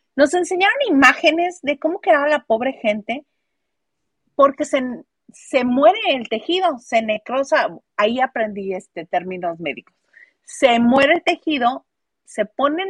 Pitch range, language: 215-290 Hz, Spanish